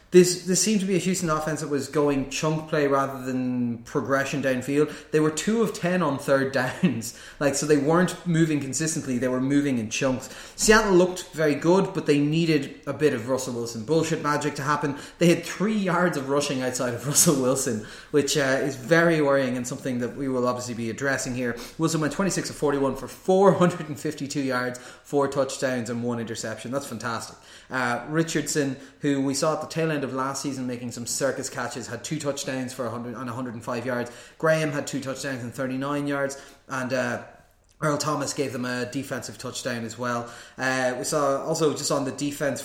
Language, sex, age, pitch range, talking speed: English, male, 30-49, 125-150 Hz, 200 wpm